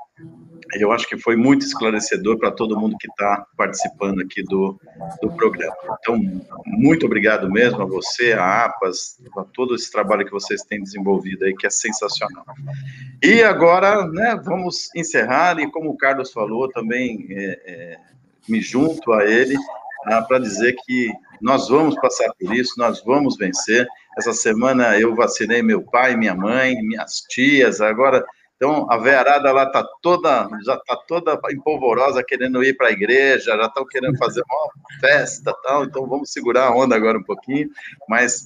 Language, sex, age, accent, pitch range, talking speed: Portuguese, male, 50-69, Brazilian, 115-170 Hz, 165 wpm